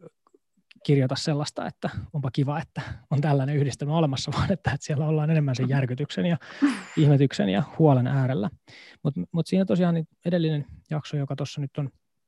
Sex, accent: male, native